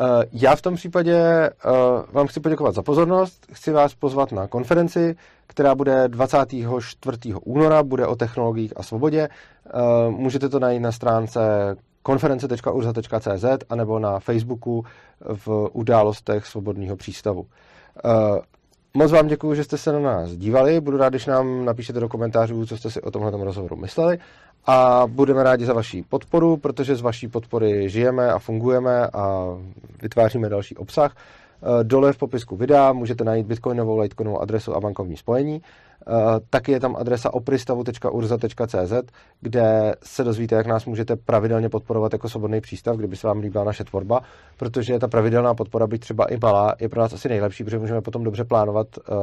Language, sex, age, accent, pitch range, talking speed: Czech, male, 30-49, native, 110-135 Hz, 155 wpm